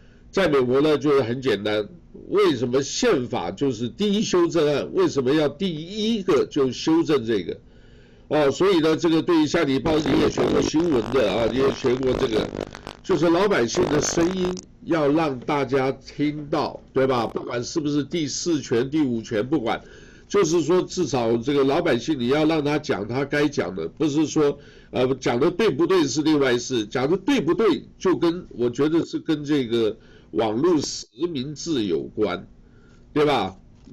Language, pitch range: Chinese, 135-180 Hz